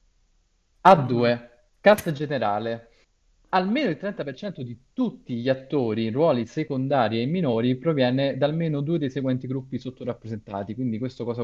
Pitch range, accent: 110-140 Hz, native